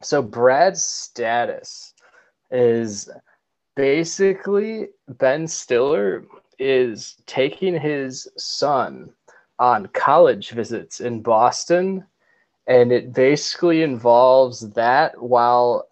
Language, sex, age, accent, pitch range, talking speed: English, male, 20-39, American, 120-145 Hz, 85 wpm